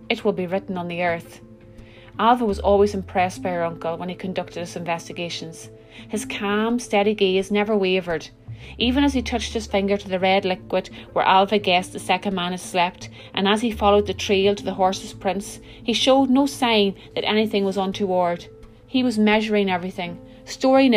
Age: 30-49